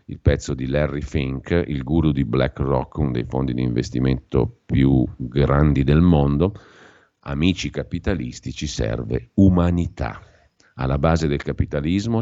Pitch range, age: 70-90 Hz, 50-69